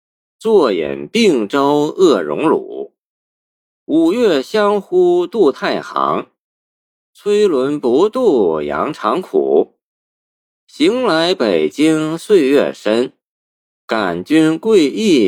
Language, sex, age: Chinese, male, 50-69